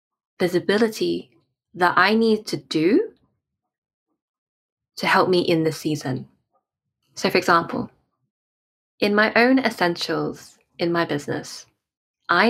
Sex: female